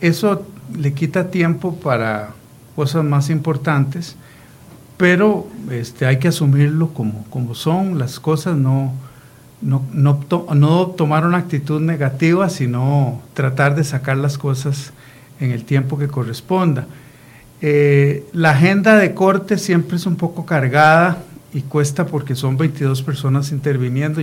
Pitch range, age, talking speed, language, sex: 125-155 Hz, 50-69, 135 wpm, Spanish, male